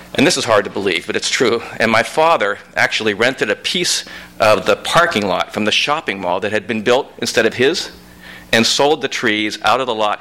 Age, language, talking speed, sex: 50-69, English, 230 wpm, male